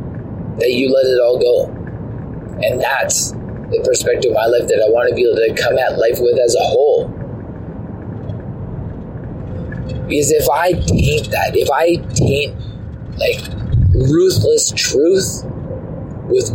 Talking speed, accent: 140 wpm, American